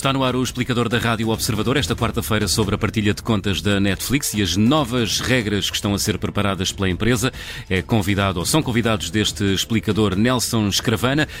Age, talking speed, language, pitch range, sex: 30-49, 195 wpm, Portuguese, 95-115 Hz, male